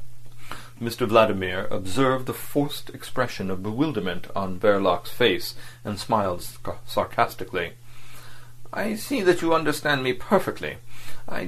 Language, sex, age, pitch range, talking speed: English, male, 40-59, 105-125 Hz, 115 wpm